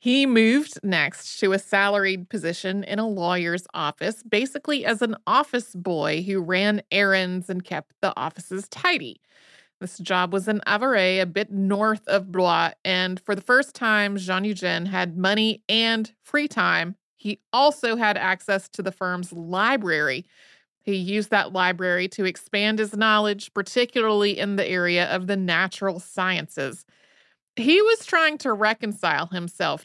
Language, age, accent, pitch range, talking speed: English, 30-49, American, 190-245 Hz, 155 wpm